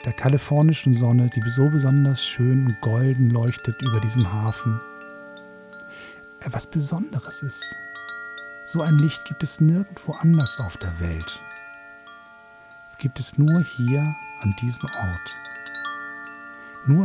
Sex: male